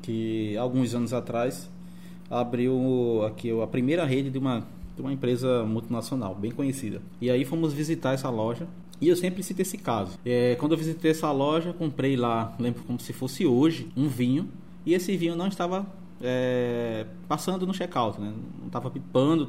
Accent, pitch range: Brazilian, 115-170 Hz